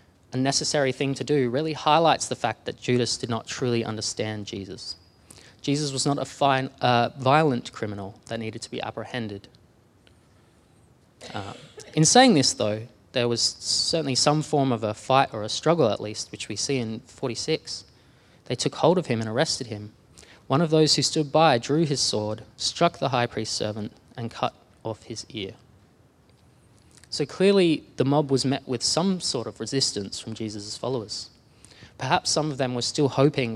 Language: English